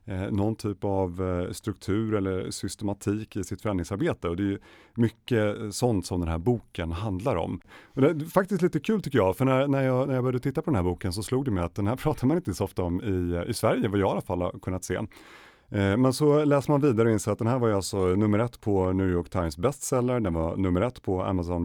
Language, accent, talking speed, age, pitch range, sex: Swedish, native, 250 wpm, 30-49, 90-115 Hz, male